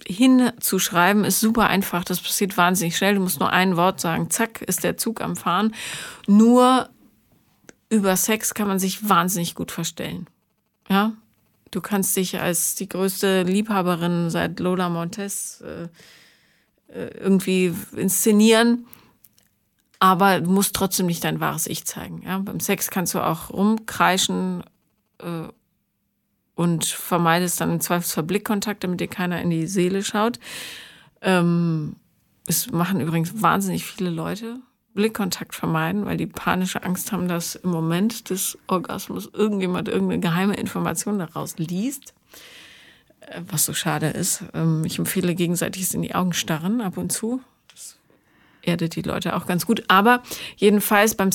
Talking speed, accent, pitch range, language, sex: 145 wpm, German, 175-210 Hz, German, female